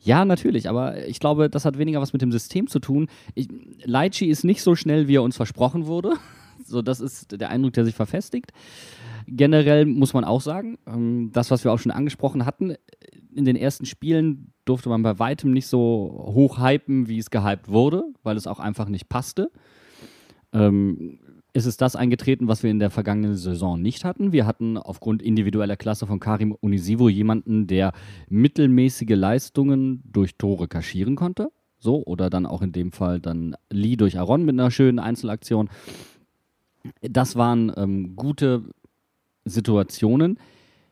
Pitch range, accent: 105-140 Hz, German